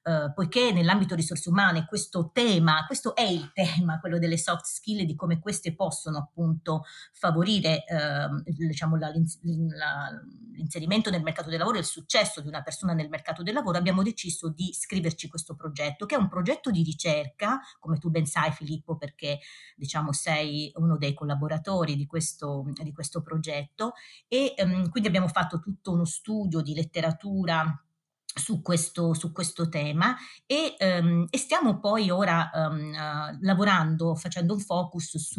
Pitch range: 155-190 Hz